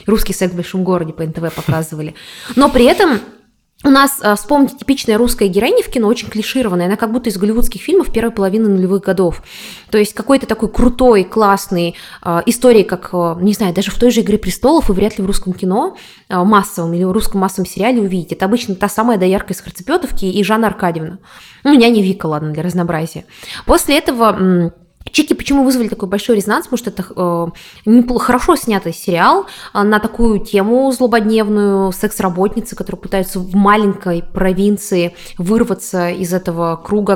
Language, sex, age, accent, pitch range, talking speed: Russian, female, 20-39, native, 185-230 Hz, 170 wpm